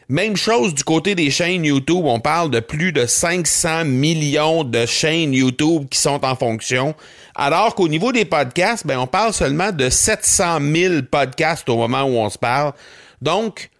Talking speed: 180 wpm